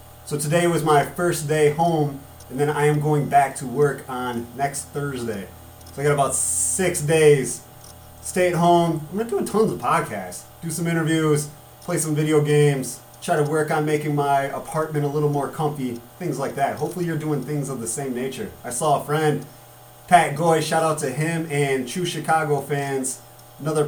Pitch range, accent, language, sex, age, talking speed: 130-165 Hz, American, English, male, 30-49, 195 wpm